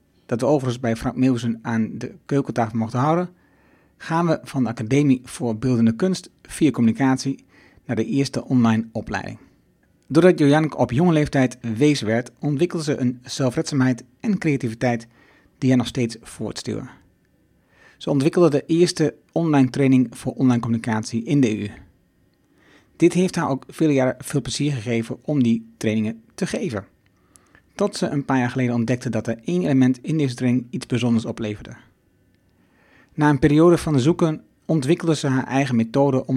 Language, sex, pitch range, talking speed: Dutch, male, 115-150 Hz, 165 wpm